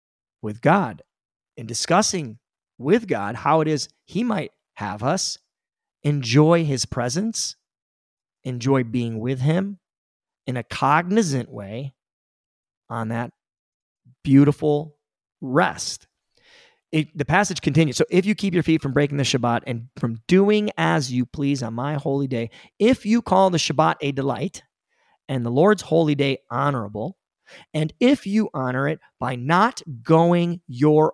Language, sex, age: English, male, 30-49